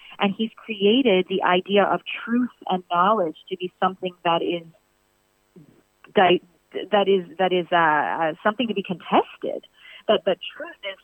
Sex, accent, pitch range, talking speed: female, American, 170-200 Hz, 145 wpm